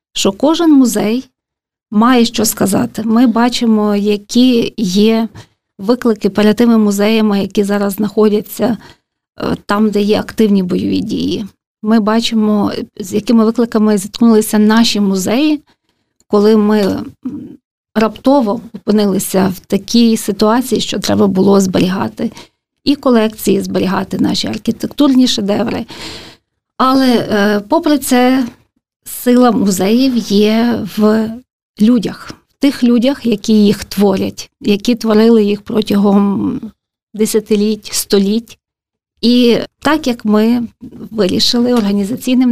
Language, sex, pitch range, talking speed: Ukrainian, female, 210-240 Hz, 105 wpm